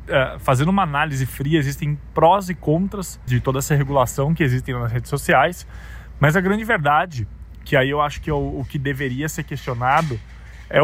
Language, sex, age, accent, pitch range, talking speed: Portuguese, male, 20-39, Brazilian, 135-165 Hz, 190 wpm